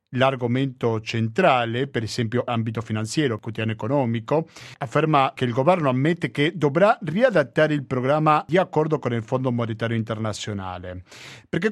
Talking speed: 145 wpm